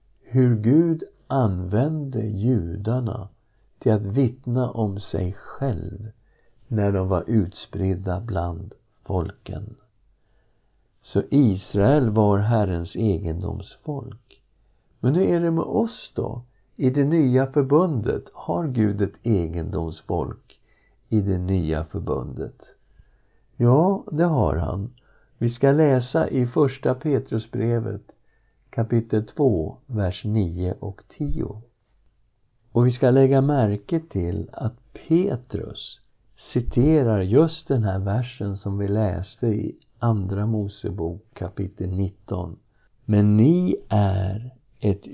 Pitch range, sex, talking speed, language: 100-130 Hz, male, 110 wpm, Swedish